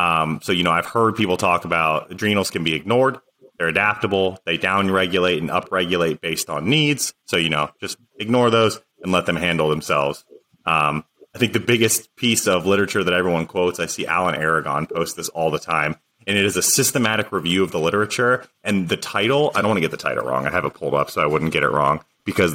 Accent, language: American, English